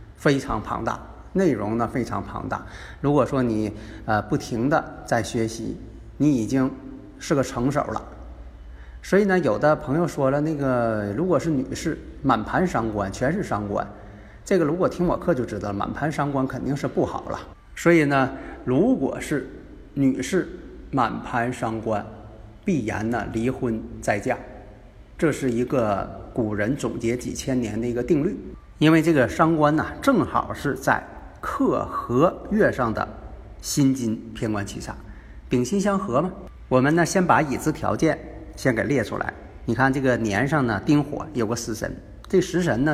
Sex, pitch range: male, 105-145 Hz